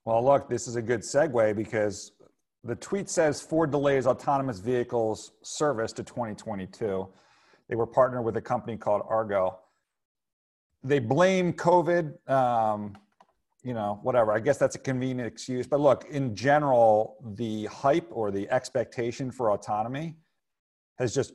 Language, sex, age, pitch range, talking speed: English, male, 40-59, 110-135 Hz, 145 wpm